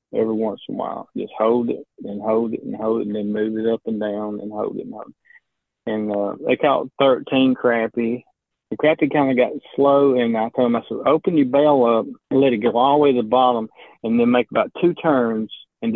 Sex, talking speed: male, 250 wpm